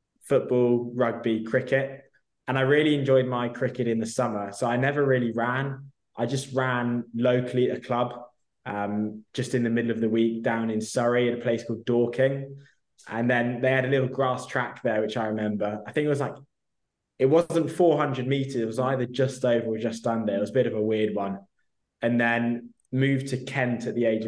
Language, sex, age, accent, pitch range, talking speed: English, male, 20-39, British, 110-125 Hz, 210 wpm